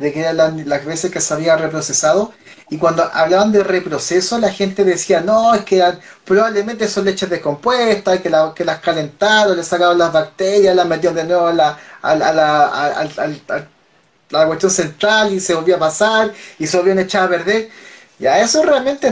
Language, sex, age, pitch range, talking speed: Spanish, male, 30-49, 180-225 Hz, 200 wpm